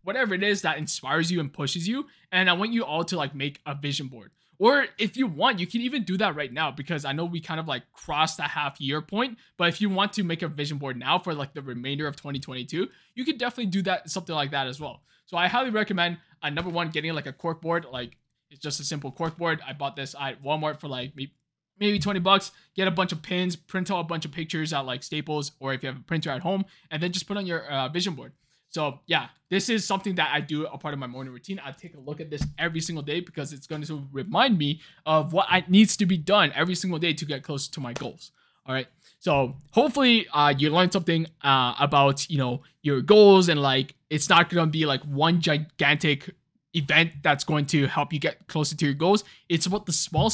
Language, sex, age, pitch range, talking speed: English, male, 20-39, 145-180 Hz, 255 wpm